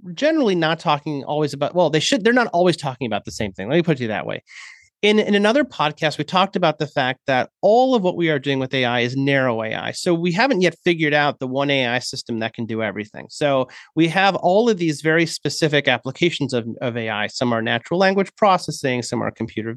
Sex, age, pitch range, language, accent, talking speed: male, 30-49, 140-195 Hz, English, American, 240 wpm